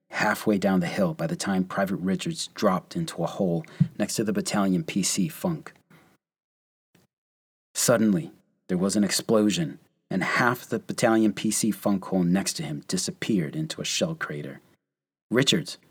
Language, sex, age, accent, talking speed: English, male, 30-49, American, 150 wpm